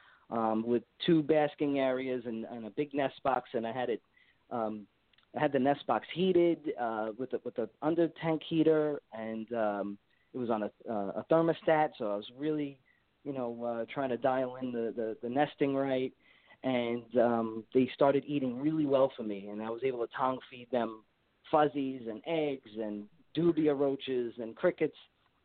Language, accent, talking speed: English, American, 190 wpm